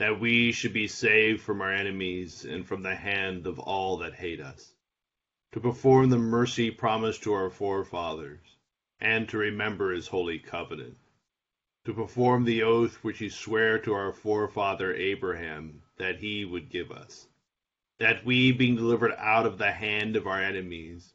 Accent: American